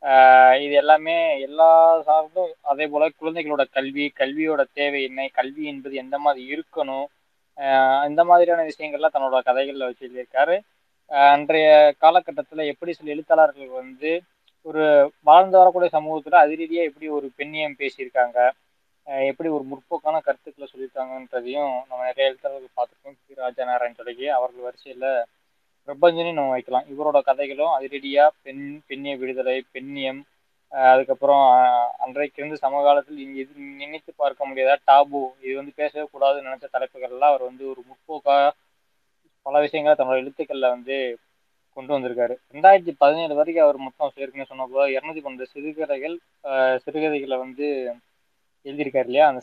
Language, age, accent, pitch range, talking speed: Tamil, 20-39, native, 130-155 Hz, 125 wpm